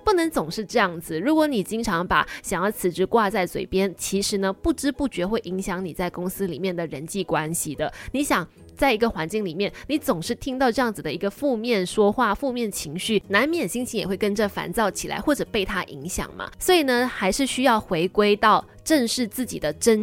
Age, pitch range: 20-39, 180-250 Hz